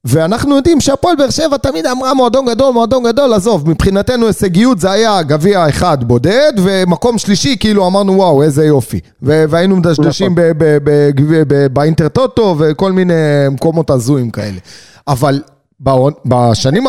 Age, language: 30-49, Hebrew